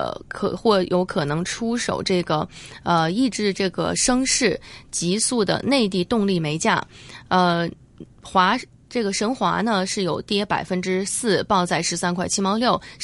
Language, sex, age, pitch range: Chinese, female, 20-39, 175-230 Hz